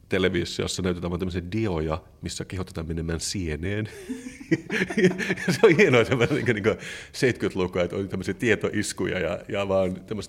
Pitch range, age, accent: 85-115 Hz, 30-49, native